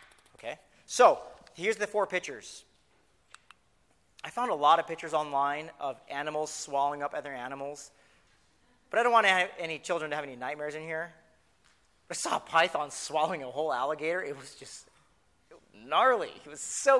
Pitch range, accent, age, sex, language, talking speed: 145-190 Hz, American, 30-49, male, English, 160 wpm